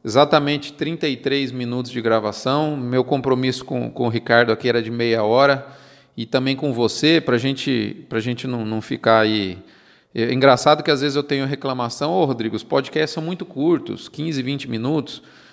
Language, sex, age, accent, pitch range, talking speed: Portuguese, male, 40-59, Brazilian, 125-165 Hz, 180 wpm